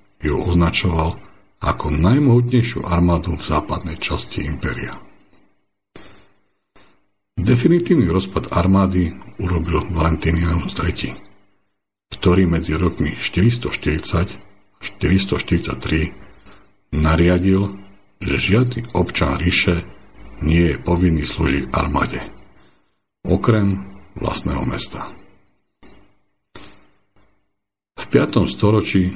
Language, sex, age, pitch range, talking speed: English, male, 60-79, 80-100 Hz, 70 wpm